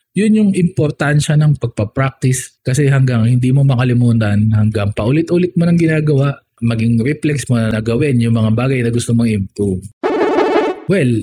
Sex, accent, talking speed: male, native, 150 wpm